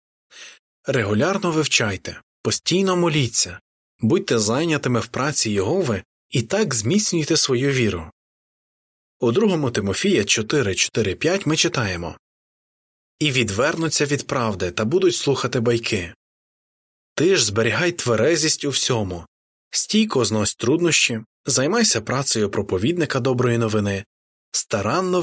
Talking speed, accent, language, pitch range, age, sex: 105 wpm, native, Ukrainian, 105-150 Hz, 20-39, male